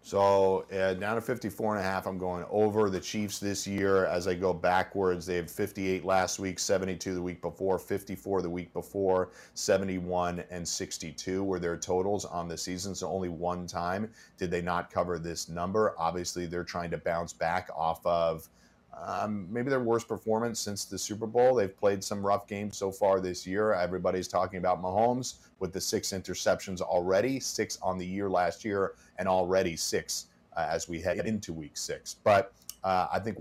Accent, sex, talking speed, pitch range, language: American, male, 185 wpm, 90-115 Hz, English